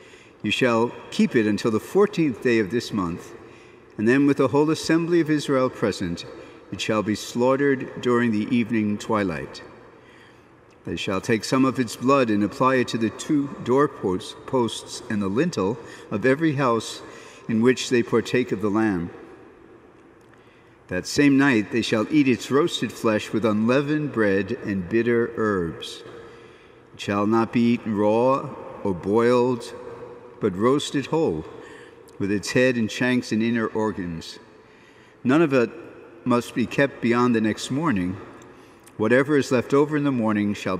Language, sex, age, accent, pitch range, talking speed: English, male, 50-69, American, 105-135 Hz, 155 wpm